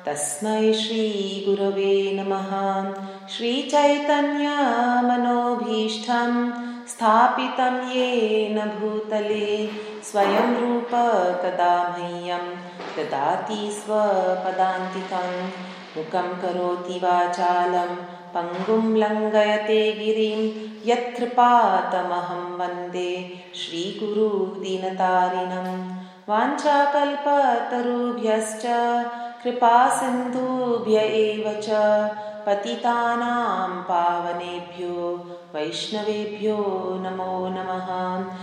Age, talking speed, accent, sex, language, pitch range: 30-49, 45 wpm, Indian, female, English, 185-235 Hz